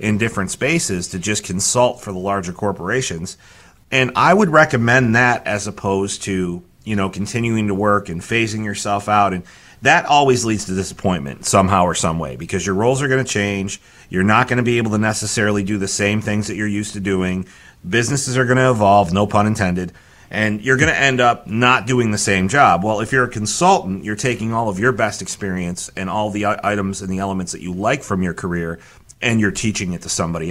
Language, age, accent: English, 30-49, American